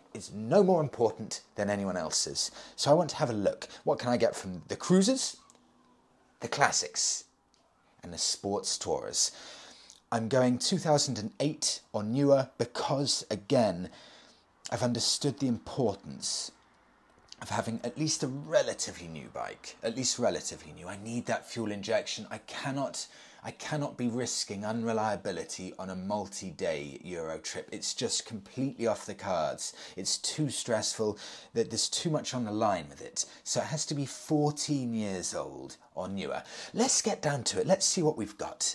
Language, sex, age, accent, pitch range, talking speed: English, male, 30-49, British, 110-155 Hz, 165 wpm